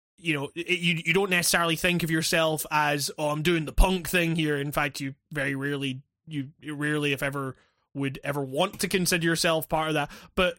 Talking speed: 205 wpm